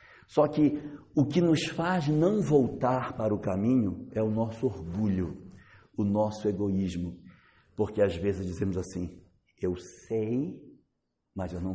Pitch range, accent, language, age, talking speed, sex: 105-170 Hz, Brazilian, Portuguese, 60-79, 145 wpm, male